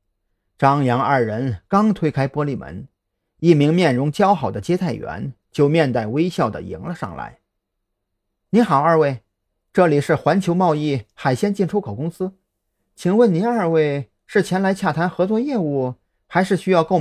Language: Chinese